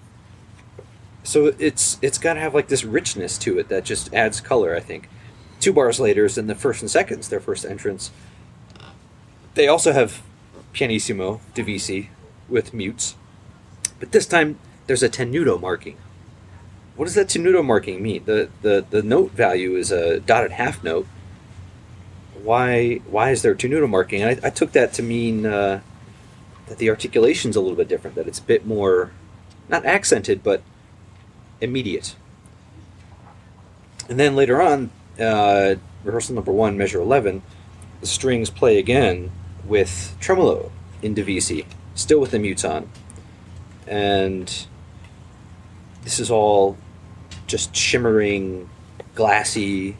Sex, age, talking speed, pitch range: male, 30-49, 140 wpm, 95-130 Hz